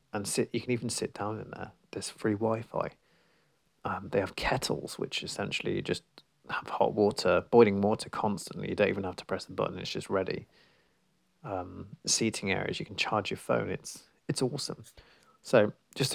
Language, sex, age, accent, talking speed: English, male, 30-49, British, 185 wpm